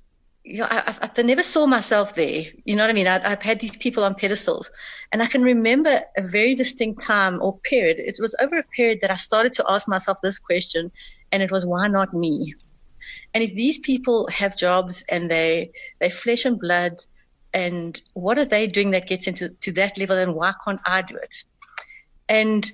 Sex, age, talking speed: female, 30-49, 205 wpm